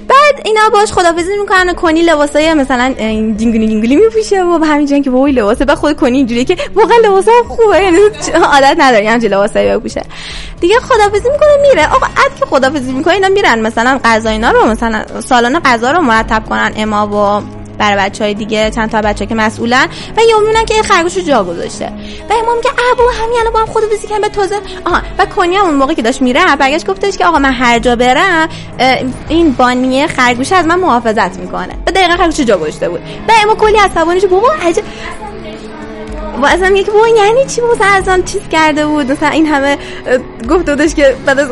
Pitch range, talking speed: 240-390 Hz, 185 wpm